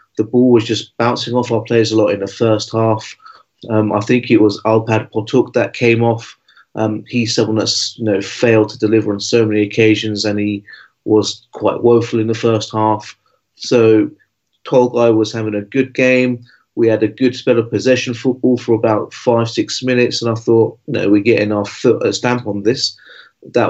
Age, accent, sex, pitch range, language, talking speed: 30-49, British, male, 110-125 Hz, English, 200 wpm